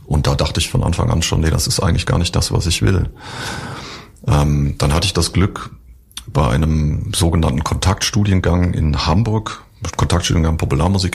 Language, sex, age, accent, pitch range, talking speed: German, male, 40-59, German, 85-100 Hz, 170 wpm